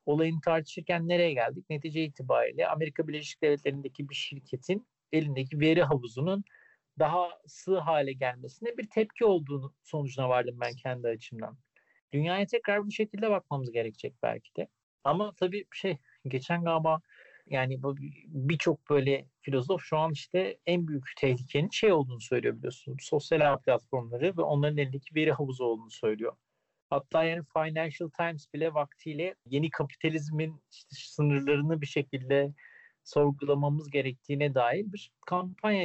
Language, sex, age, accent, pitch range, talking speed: Turkish, male, 50-69, native, 140-175 Hz, 130 wpm